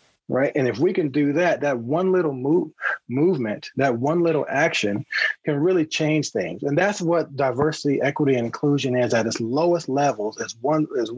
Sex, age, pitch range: male, 30-49, 120-155 Hz